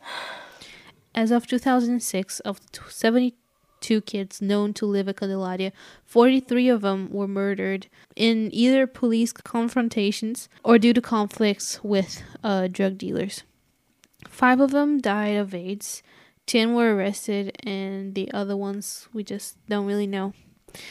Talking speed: 130 wpm